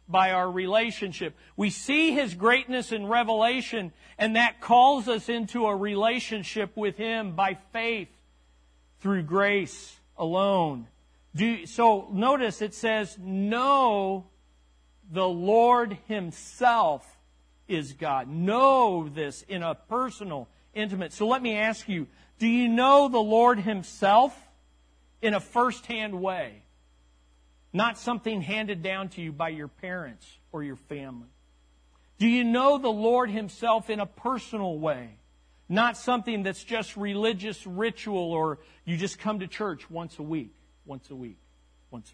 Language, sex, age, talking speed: English, male, 50-69, 140 wpm